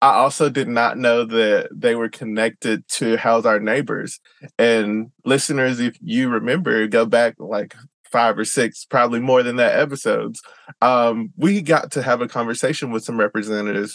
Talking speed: 170 wpm